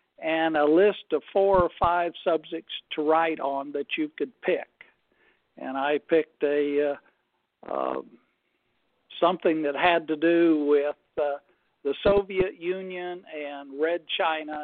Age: 60-79